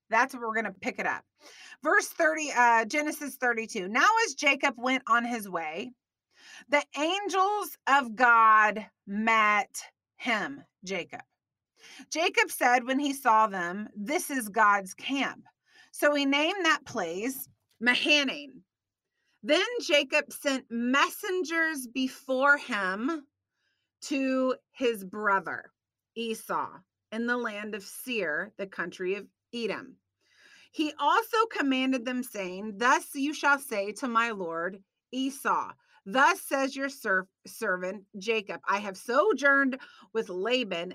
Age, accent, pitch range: 30-49, American, 210-285 Hz